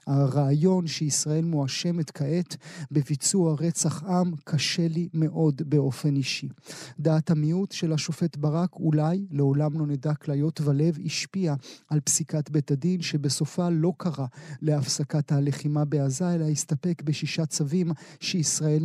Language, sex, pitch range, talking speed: Hebrew, male, 150-170 Hz, 125 wpm